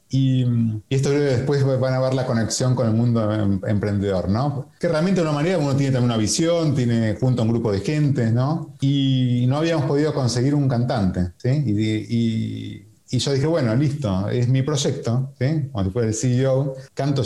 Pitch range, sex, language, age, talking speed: 115-140 Hz, male, Spanish, 30-49, 200 wpm